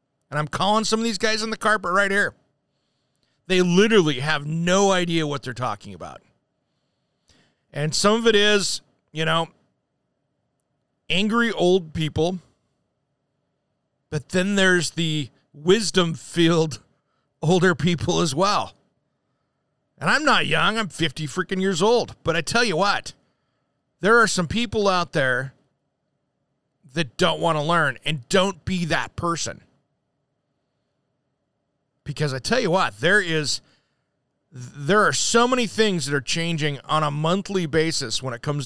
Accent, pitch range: American, 140-185 Hz